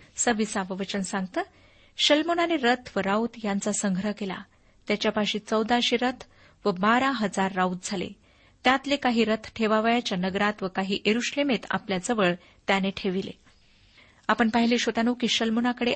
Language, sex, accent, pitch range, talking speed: Marathi, female, native, 200-250 Hz, 120 wpm